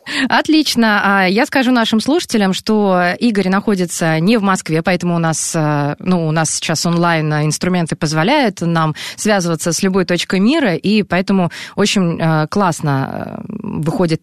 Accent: native